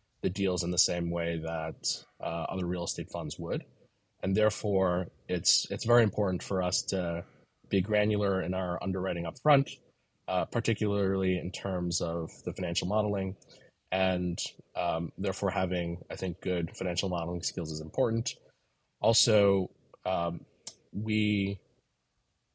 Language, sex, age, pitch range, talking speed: English, male, 20-39, 90-110 Hz, 135 wpm